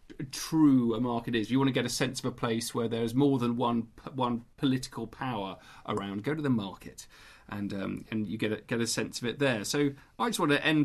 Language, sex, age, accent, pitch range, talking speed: English, male, 40-59, British, 115-145 Hz, 250 wpm